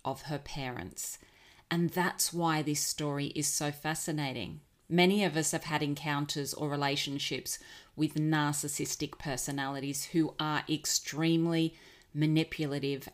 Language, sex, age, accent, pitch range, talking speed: English, female, 30-49, Australian, 145-170 Hz, 120 wpm